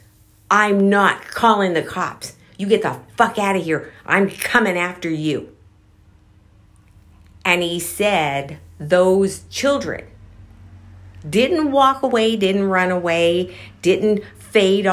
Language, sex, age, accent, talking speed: English, female, 50-69, American, 115 wpm